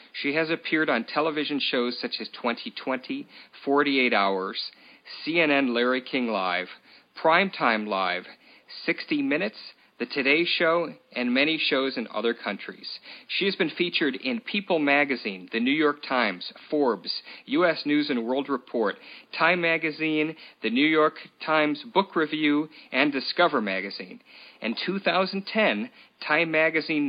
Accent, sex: American, male